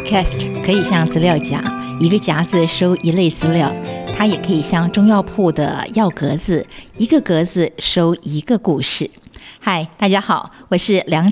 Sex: female